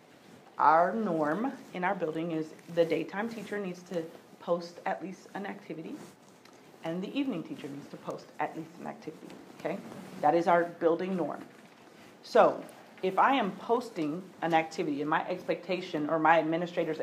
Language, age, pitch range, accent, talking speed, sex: English, 40-59, 160-205 Hz, American, 160 wpm, female